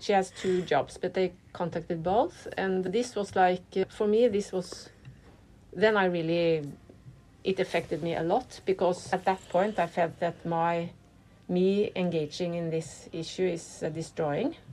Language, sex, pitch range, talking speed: English, female, 160-190 Hz, 165 wpm